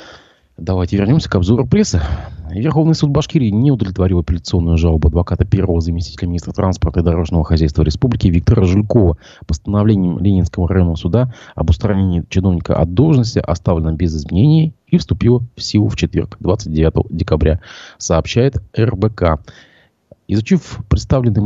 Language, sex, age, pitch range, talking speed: Russian, male, 30-49, 85-115 Hz, 130 wpm